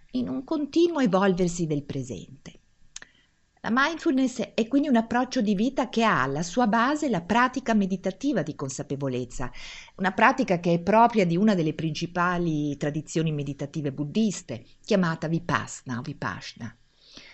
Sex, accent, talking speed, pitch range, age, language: female, native, 140 wpm, 145-215 Hz, 50-69, Italian